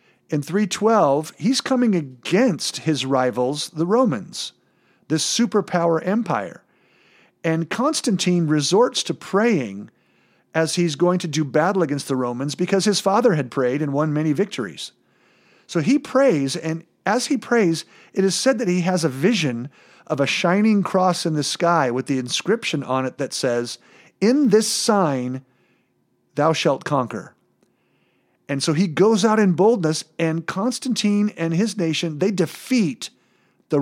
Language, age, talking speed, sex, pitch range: English, 50-69, 155 wpm, male, 140-200 Hz